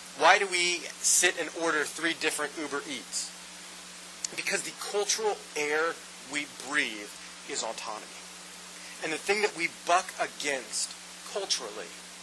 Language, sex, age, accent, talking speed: English, male, 30-49, American, 130 wpm